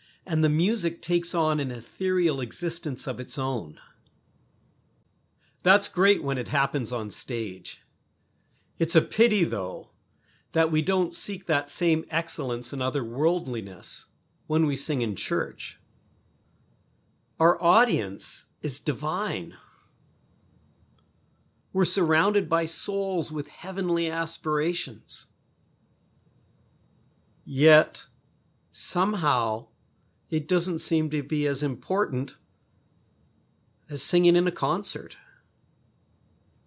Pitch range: 130-170 Hz